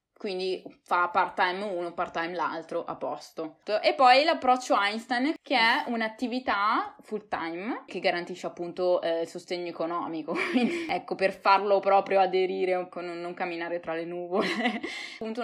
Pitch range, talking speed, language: 170-205 Hz, 135 wpm, Italian